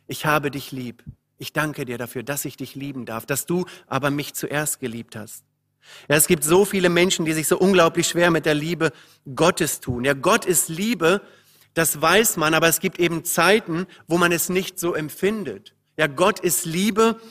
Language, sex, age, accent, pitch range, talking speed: German, male, 40-59, German, 145-180 Hz, 200 wpm